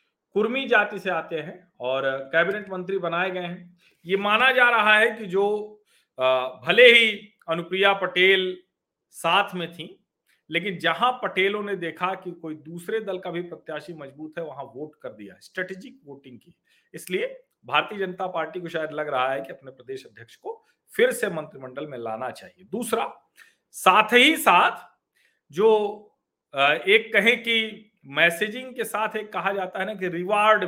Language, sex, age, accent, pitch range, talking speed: Hindi, male, 40-59, native, 155-210 Hz, 165 wpm